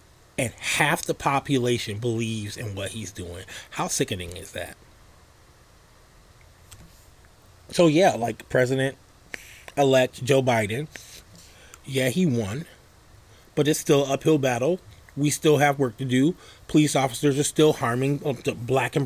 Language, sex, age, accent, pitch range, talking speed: English, male, 30-49, American, 110-150 Hz, 130 wpm